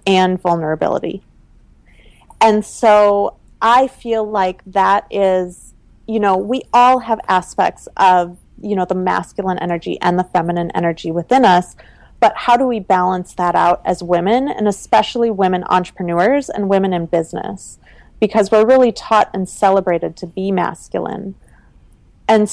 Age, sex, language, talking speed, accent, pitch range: 30-49, female, English, 145 wpm, American, 175-215 Hz